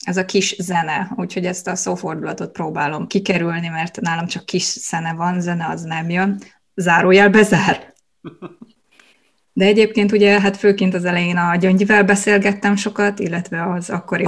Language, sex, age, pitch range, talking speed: Hungarian, female, 20-39, 185-210 Hz, 150 wpm